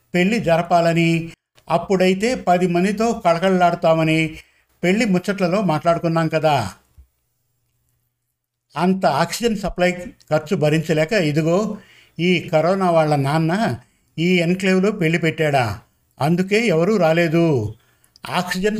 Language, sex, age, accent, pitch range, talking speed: Telugu, male, 50-69, native, 160-190 Hz, 90 wpm